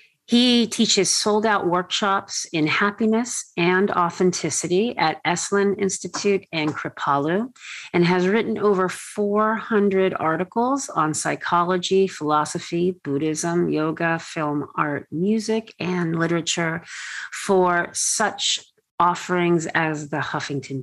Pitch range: 160-200 Hz